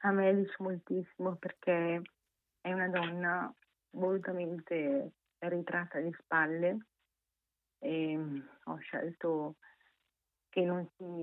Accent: native